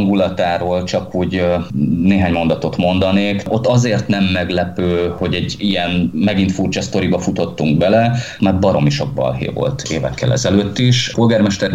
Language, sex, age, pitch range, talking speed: Hungarian, male, 30-49, 90-115 Hz, 130 wpm